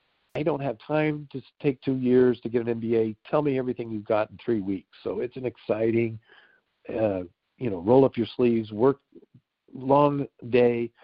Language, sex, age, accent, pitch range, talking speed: English, male, 50-69, American, 115-145 Hz, 185 wpm